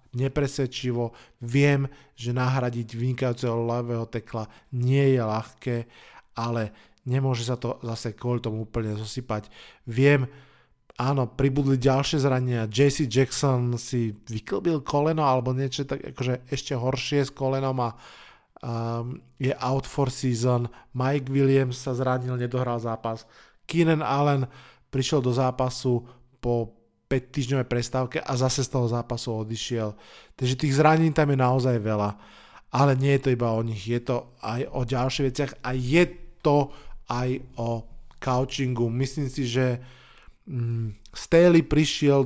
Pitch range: 120-135 Hz